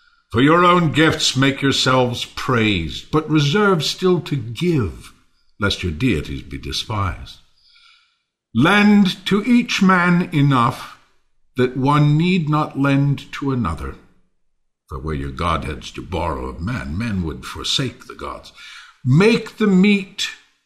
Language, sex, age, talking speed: English, male, 60-79, 130 wpm